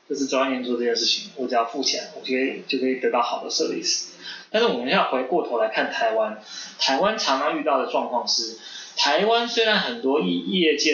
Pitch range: 130-180 Hz